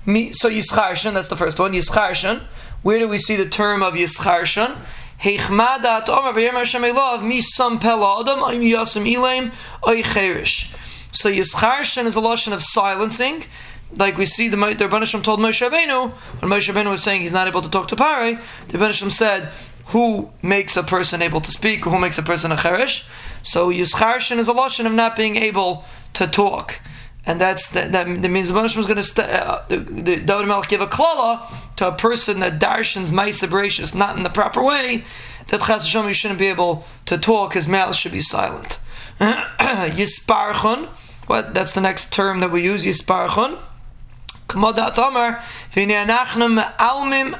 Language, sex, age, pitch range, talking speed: English, male, 20-39, 185-230 Hz, 155 wpm